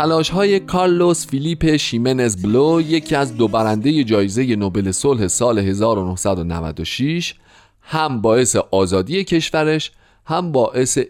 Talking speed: 110 wpm